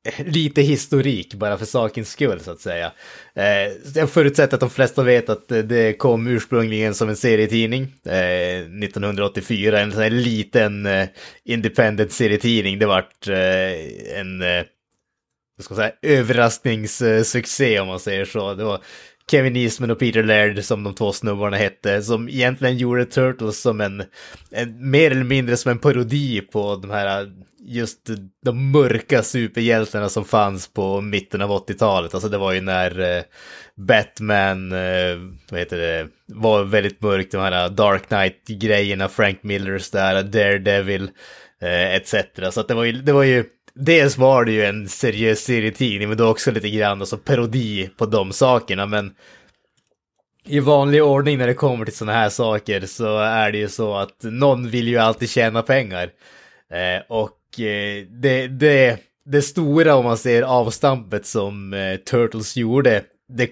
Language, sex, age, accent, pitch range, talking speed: Swedish, male, 20-39, Norwegian, 100-120 Hz, 155 wpm